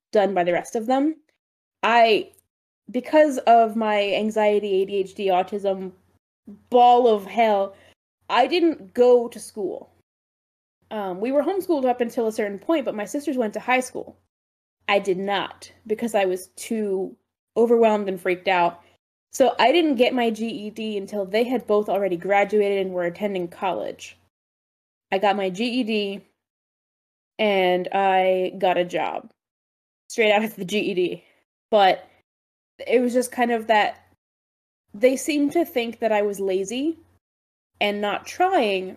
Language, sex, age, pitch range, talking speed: English, female, 10-29, 190-235 Hz, 150 wpm